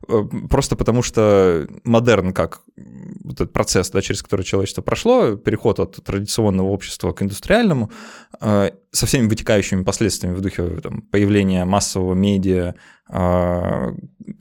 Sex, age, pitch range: male, 20-39, 100-135 Hz